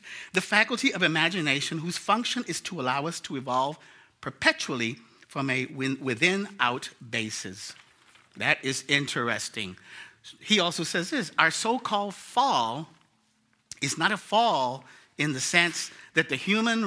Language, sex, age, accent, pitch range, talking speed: English, male, 50-69, American, 130-205 Hz, 130 wpm